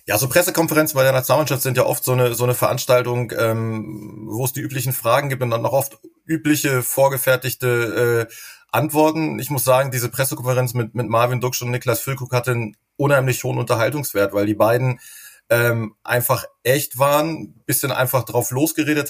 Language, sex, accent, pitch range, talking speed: German, male, German, 120-145 Hz, 180 wpm